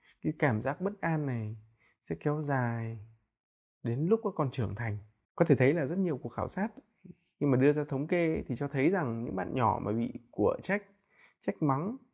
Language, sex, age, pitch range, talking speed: Vietnamese, male, 20-39, 120-175 Hz, 205 wpm